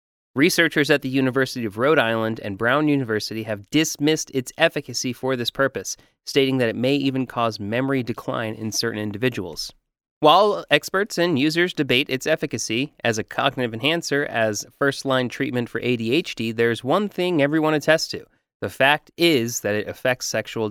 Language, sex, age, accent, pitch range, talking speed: English, male, 30-49, American, 110-140 Hz, 165 wpm